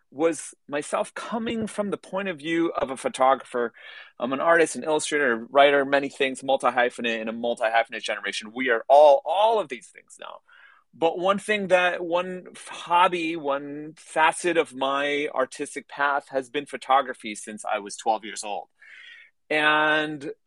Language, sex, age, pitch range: English, male, 30-49, 125-175 Hz